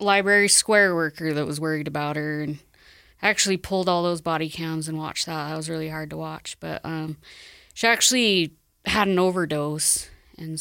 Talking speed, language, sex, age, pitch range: 180 wpm, English, female, 20-39, 160-195 Hz